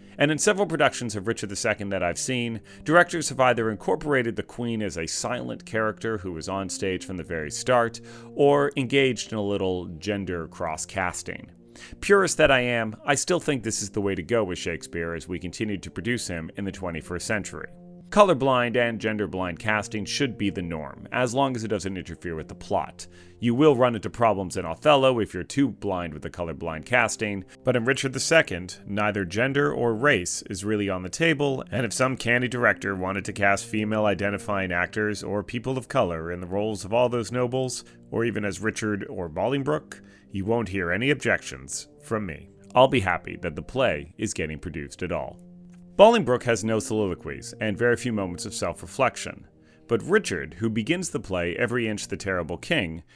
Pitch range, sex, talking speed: 90-125 Hz, male, 195 wpm